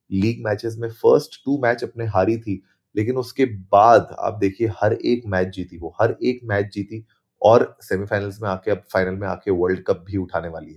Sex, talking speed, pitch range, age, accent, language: male, 200 wpm, 100-115 Hz, 30-49, native, Hindi